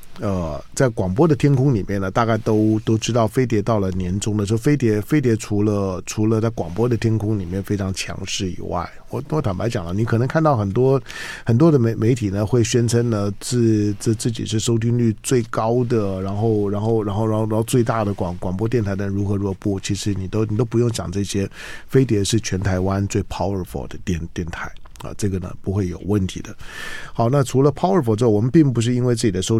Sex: male